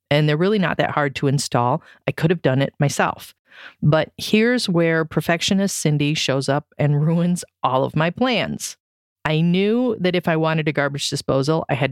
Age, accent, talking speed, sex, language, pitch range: 40-59, American, 190 wpm, female, English, 155-210 Hz